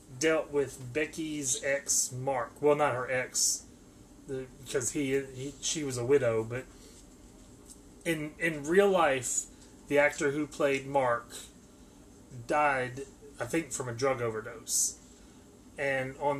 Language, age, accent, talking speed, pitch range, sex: English, 30-49, American, 130 wpm, 125-145 Hz, male